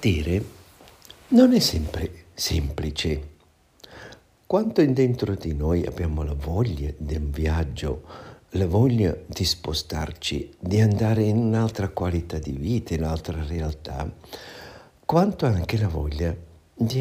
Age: 60-79